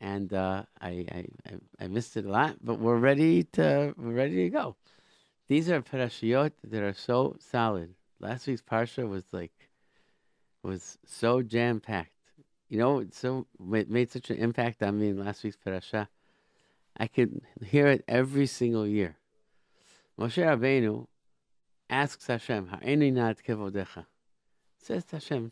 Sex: male